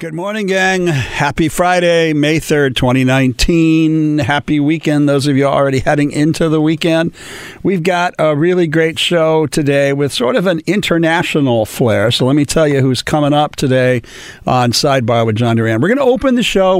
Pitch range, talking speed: 130-165 Hz, 180 wpm